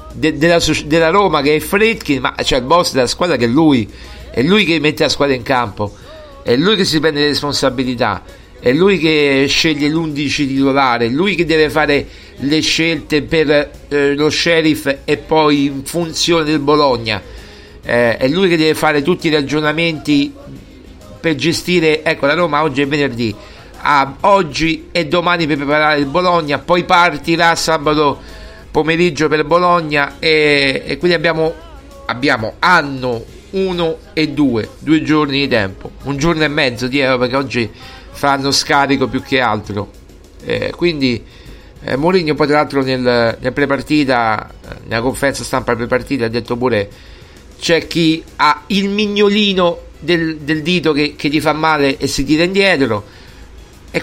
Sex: male